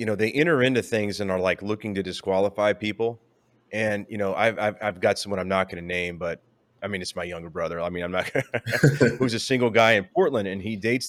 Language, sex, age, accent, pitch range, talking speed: English, male, 30-49, American, 100-120 Hz, 250 wpm